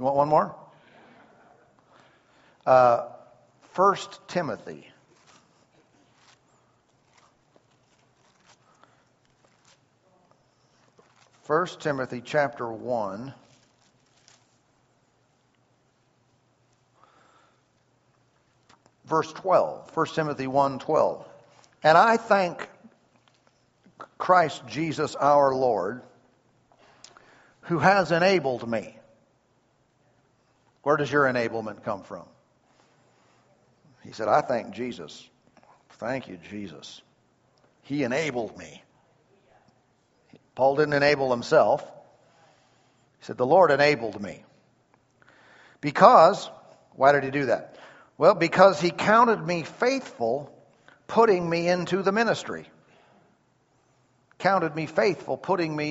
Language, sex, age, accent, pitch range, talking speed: English, male, 60-79, American, 125-170 Hz, 85 wpm